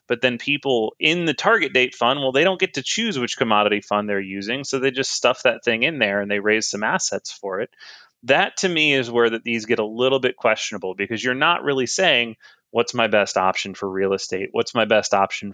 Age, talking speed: 30-49, 240 wpm